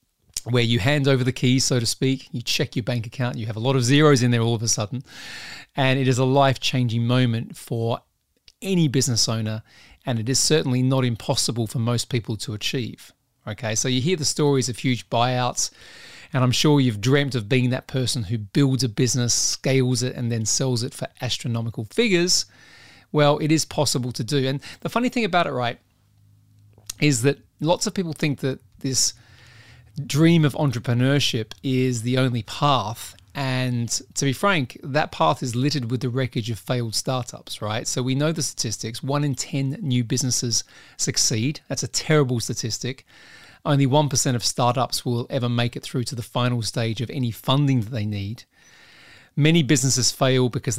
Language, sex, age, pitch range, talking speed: English, male, 30-49, 120-135 Hz, 190 wpm